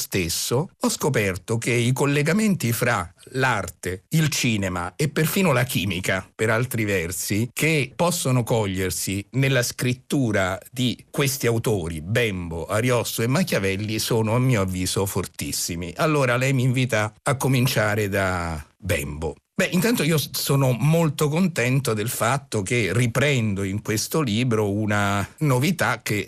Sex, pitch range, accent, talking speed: male, 105-135 Hz, native, 130 wpm